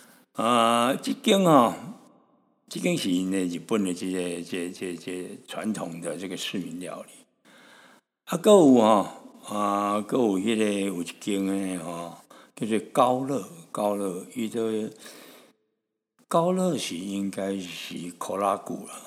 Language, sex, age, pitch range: Chinese, male, 60-79, 100-140 Hz